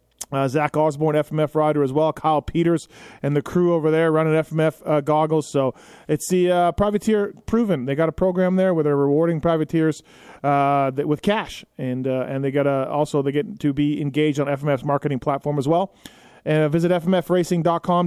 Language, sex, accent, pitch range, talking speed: English, male, American, 145-180 Hz, 185 wpm